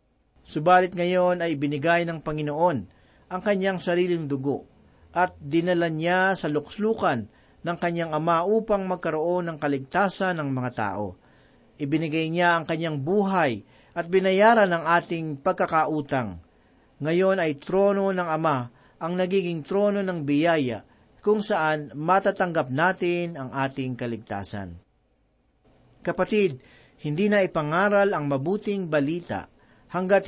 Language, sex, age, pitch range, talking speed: Filipino, male, 40-59, 140-185 Hz, 120 wpm